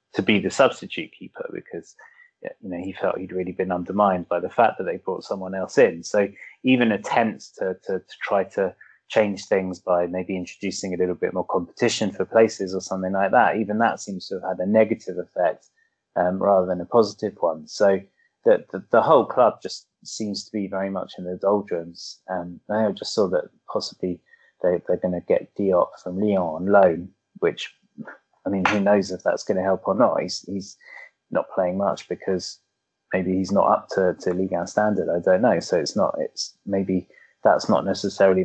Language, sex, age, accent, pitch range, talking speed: English, male, 20-39, British, 95-110 Hz, 205 wpm